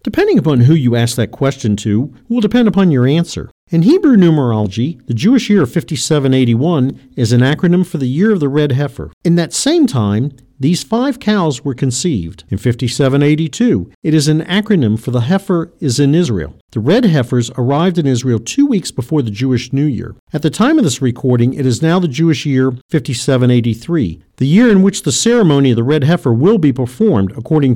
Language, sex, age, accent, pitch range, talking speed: English, male, 50-69, American, 125-190 Hz, 200 wpm